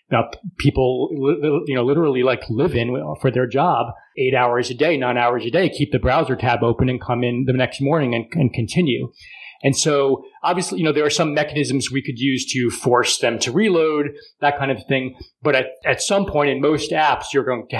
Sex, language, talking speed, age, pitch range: male, English, 220 wpm, 30-49, 120-150 Hz